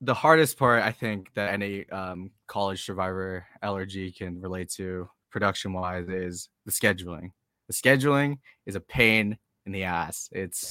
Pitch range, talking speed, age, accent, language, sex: 95-115 Hz, 155 wpm, 20-39, American, English, male